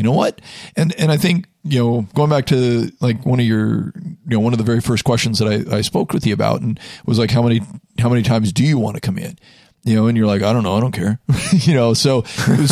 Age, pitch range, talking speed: 40-59, 110-140 Hz, 285 wpm